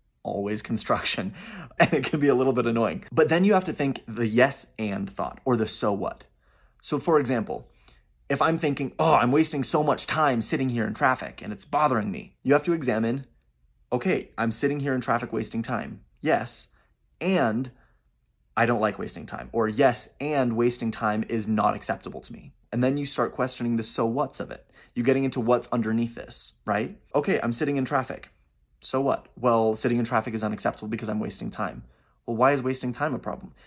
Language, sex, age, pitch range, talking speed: English, male, 30-49, 110-135 Hz, 205 wpm